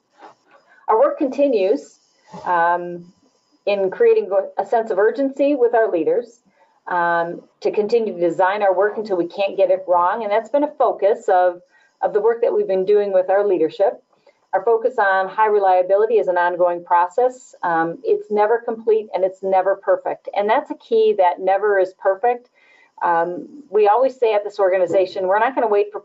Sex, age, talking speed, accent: female, 40-59, 180 wpm, American